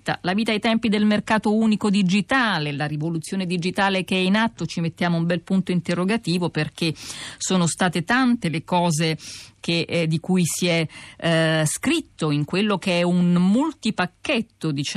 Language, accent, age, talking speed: Italian, native, 50-69, 160 wpm